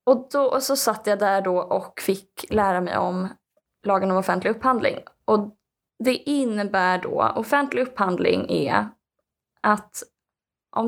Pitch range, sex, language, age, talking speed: 190-245 Hz, female, Swedish, 20-39, 145 wpm